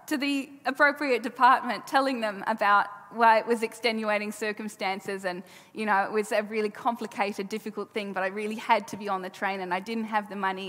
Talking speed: 210 wpm